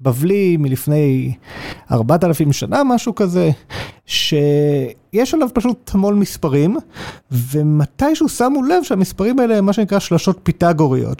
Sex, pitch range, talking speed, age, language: male, 165-235 Hz, 120 wpm, 30-49, Hebrew